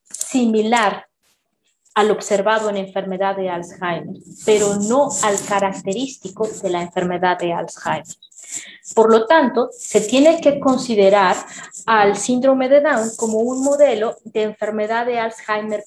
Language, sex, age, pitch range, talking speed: Spanish, female, 30-49, 200-260 Hz, 130 wpm